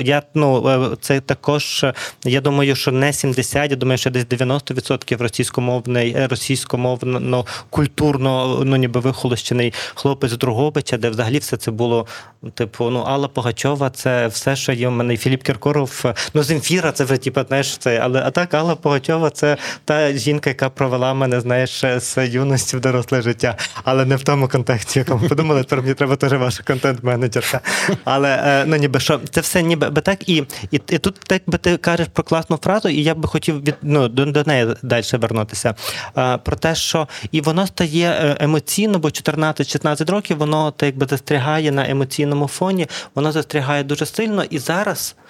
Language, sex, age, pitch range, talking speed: Ukrainian, male, 20-39, 125-150 Hz, 170 wpm